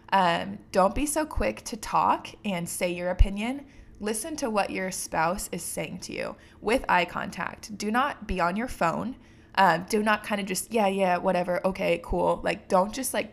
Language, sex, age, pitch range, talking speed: English, female, 20-39, 180-220 Hz, 205 wpm